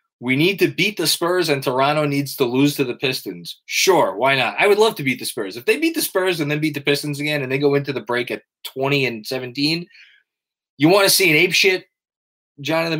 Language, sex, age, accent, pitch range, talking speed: English, male, 20-39, American, 120-155 Hz, 240 wpm